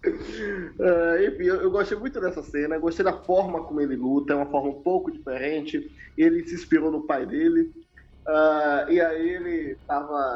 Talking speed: 180 wpm